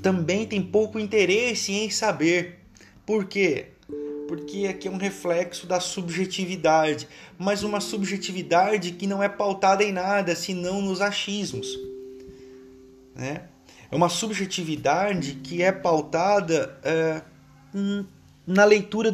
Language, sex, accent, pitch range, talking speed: Portuguese, male, Brazilian, 145-215 Hz, 110 wpm